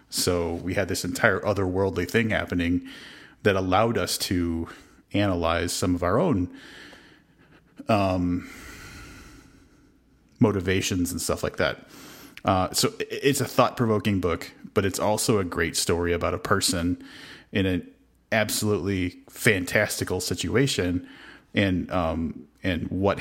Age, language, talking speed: 30-49, English, 120 wpm